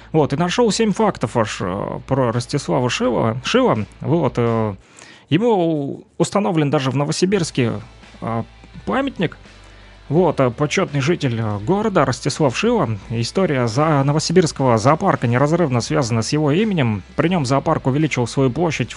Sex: male